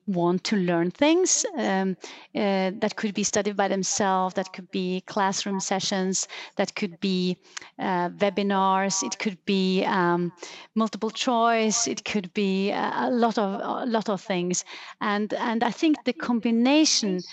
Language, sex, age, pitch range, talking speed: English, female, 30-49, 190-225 Hz, 150 wpm